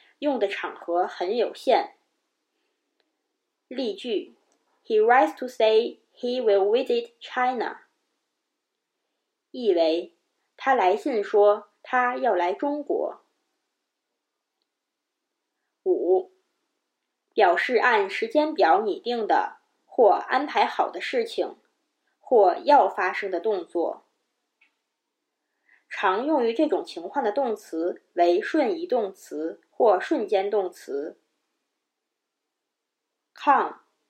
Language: Chinese